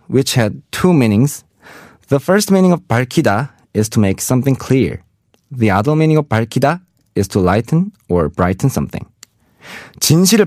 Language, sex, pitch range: Korean, male, 105-155 Hz